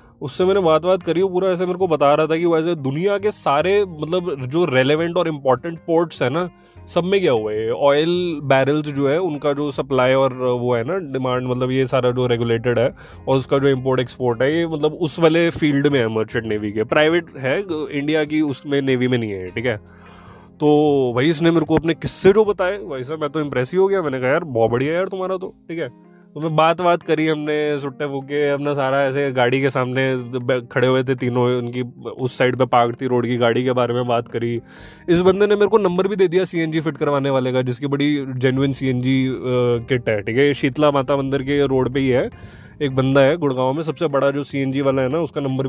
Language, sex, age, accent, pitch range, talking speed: Hindi, male, 20-39, native, 125-160 Hz, 235 wpm